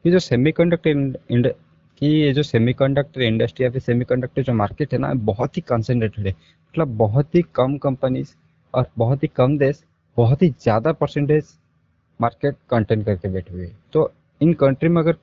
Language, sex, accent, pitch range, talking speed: Hindi, male, native, 115-150 Hz, 175 wpm